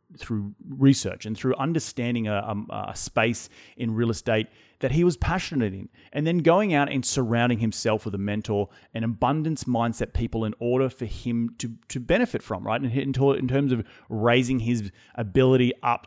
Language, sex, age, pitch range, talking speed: English, male, 30-49, 110-135 Hz, 185 wpm